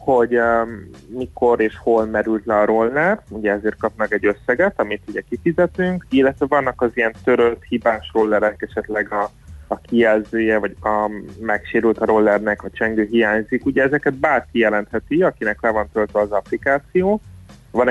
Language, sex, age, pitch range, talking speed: Hungarian, male, 30-49, 105-125 Hz, 160 wpm